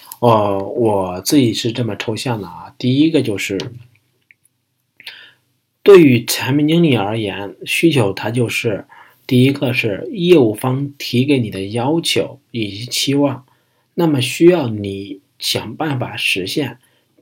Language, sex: Chinese, male